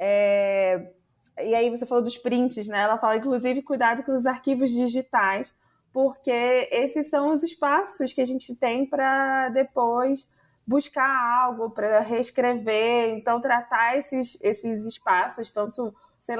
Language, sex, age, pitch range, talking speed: Portuguese, female, 20-39, 205-255 Hz, 135 wpm